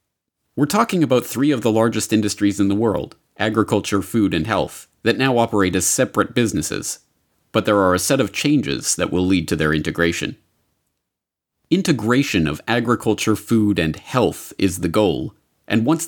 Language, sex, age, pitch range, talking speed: Dutch, male, 30-49, 90-115 Hz, 170 wpm